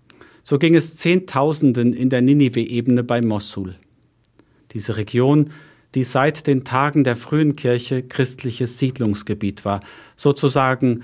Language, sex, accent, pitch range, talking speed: German, male, German, 115-145 Hz, 120 wpm